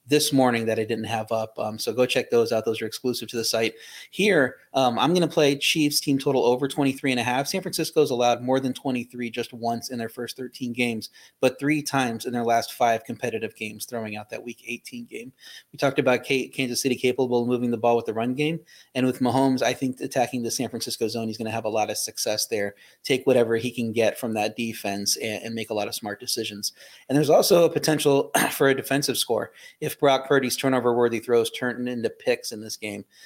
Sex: male